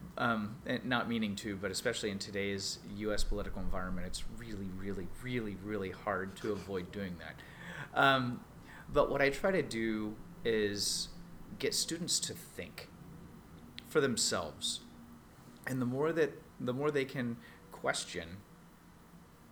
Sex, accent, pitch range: male, American, 95-120 Hz